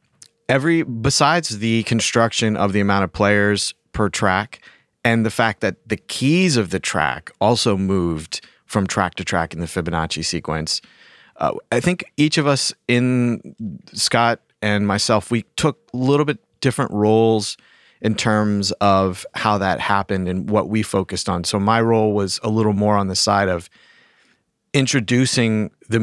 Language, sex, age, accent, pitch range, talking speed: English, male, 30-49, American, 95-115 Hz, 165 wpm